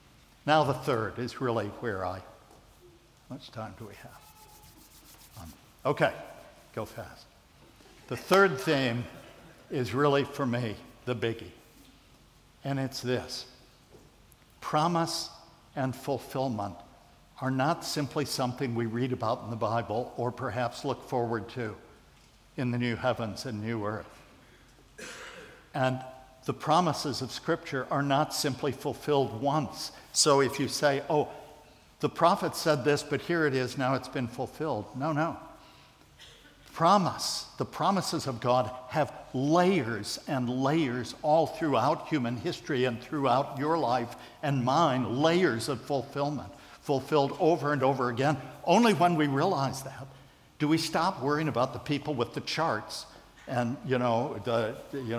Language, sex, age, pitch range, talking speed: English, male, 60-79, 120-150 Hz, 140 wpm